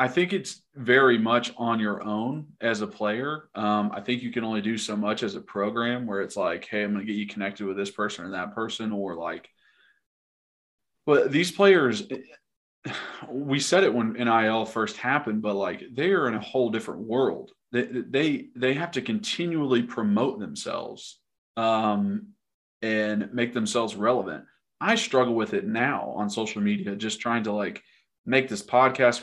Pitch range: 105-140 Hz